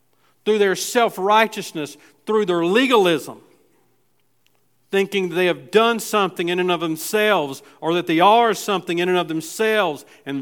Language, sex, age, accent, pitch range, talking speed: English, male, 50-69, American, 140-180 Hz, 150 wpm